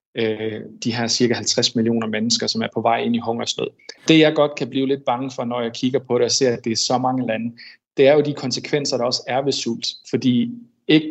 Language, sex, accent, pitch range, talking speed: Danish, male, native, 115-135 Hz, 250 wpm